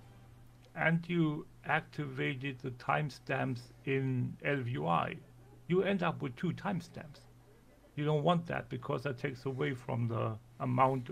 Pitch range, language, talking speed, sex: 120-145 Hz, English, 130 wpm, male